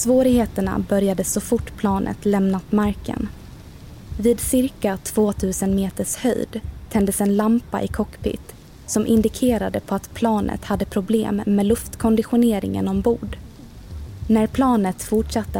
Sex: female